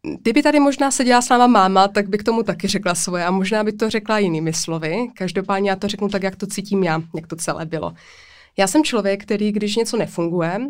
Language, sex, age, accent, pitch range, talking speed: Czech, female, 20-39, native, 180-205 Hz, 230 wpm